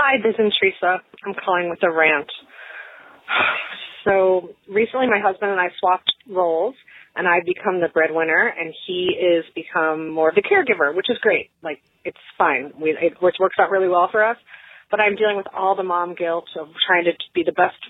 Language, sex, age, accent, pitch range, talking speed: English, female, 30-49, American, 175-210 Hz, 195 wpm